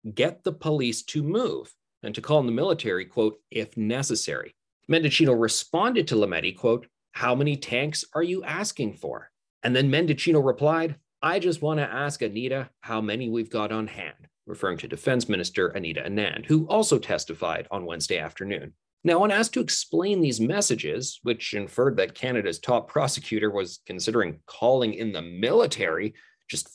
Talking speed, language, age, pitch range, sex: 165 wpm, English, 30-49, 110-155 Hz, male